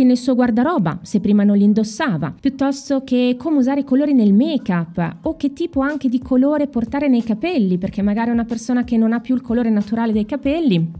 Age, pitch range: 20-39, 185-250 Hz